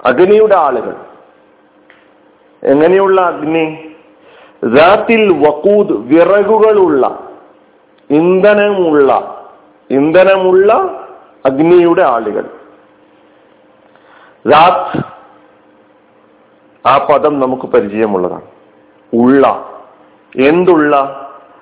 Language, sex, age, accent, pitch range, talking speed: Malayalam, male, 50-69, native, 135-220 Hz, 50 wpm